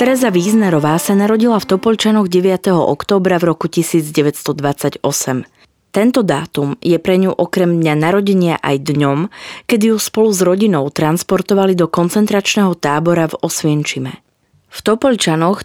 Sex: female